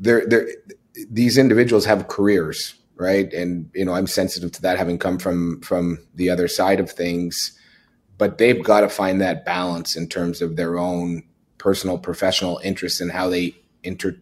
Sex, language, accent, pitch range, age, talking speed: male, English, American, 90-100 Hz, 30-49, 175 wpm